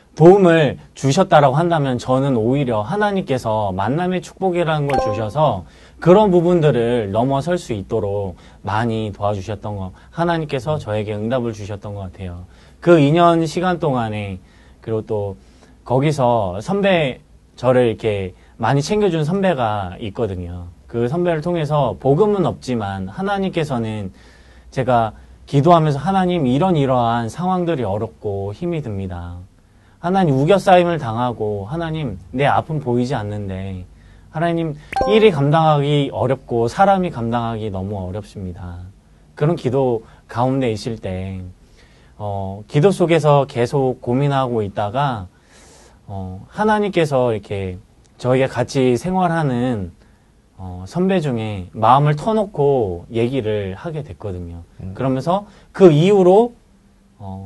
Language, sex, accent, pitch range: Korean, male, native, 100-160 Hz